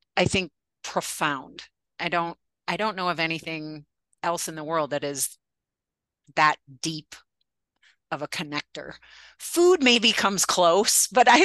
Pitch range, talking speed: 155-195 Hz, 140 wpm